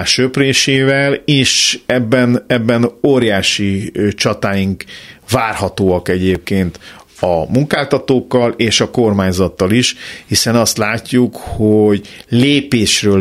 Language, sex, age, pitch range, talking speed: Hungarian, male, 50-69, 90-115 Hz, 85 wpm